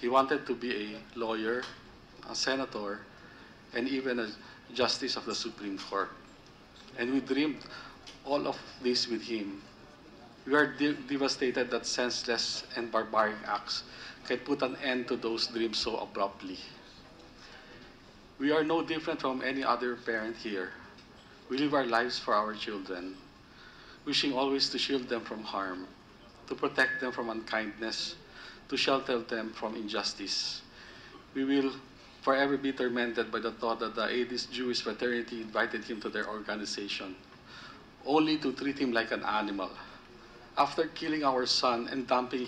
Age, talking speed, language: 50-69, 150 wpm, English